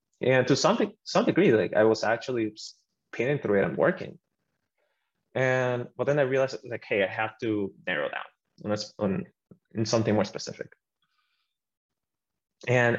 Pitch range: 110-130 Hz